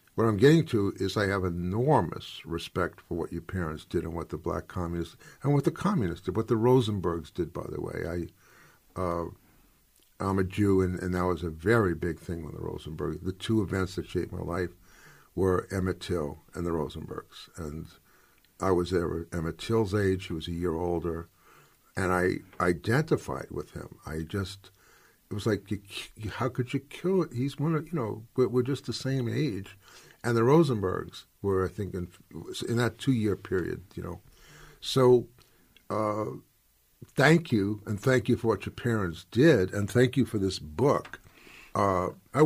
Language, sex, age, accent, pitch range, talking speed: English, male, 60-79, American, 90-120 Hz, 185 wpm